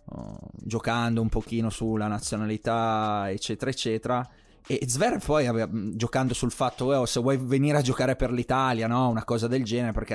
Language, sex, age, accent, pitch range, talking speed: Italian, male, 20-39, native, 115-140 Hz, 155 wpm